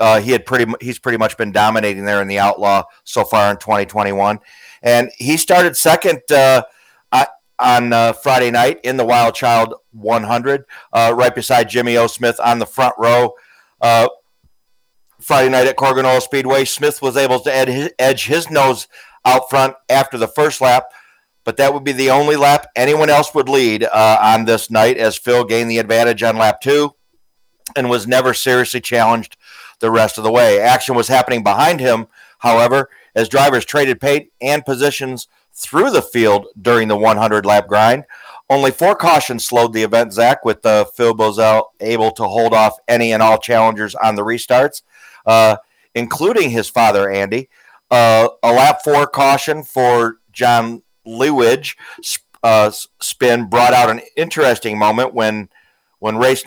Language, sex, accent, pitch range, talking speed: English, male, American, 110-130 Hz, 170 wpm